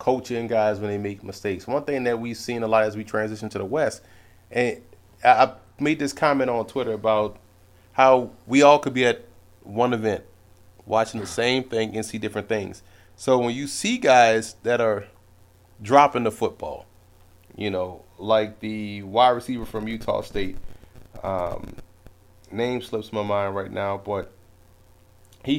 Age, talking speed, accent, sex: 30-49, 165 wpm, American, male